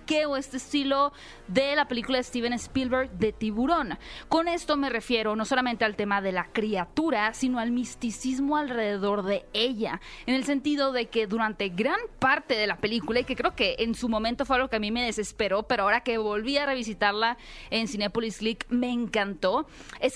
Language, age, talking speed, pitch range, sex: Spanish, 20-39, 190 wpm, 220-270 Hz, female